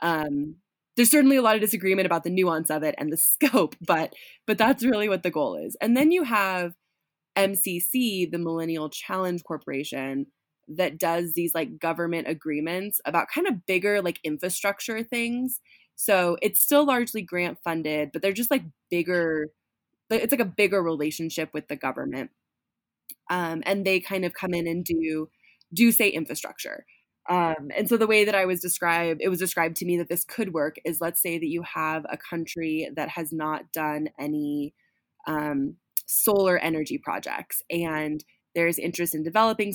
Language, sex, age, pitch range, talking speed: English, female, 20-39, 160-195 Hz, 175 wpm